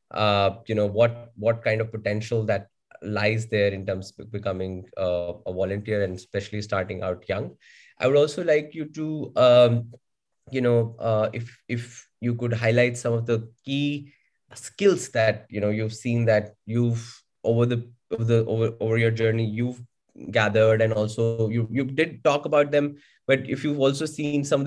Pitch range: 110-125 Hz